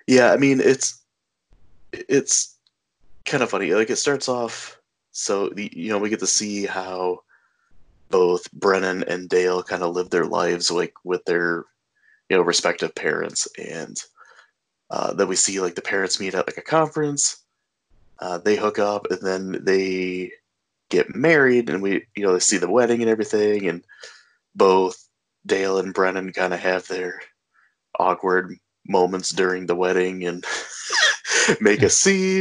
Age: 20-39